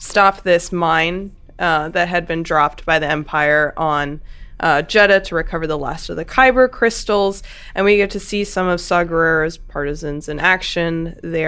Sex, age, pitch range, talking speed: female, 20-39, 155-190 Hz, 180 wpm